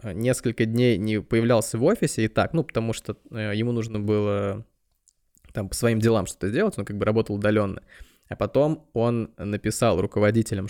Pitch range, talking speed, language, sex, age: 100-120 Hz, 170 wpm, Russian, male, 20-39